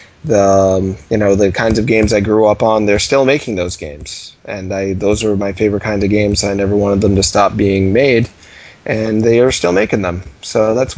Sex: male